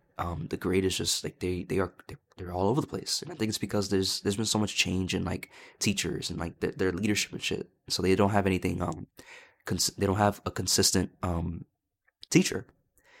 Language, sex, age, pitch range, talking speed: English, male, 20-39, 95-105 Hz, 225 wpm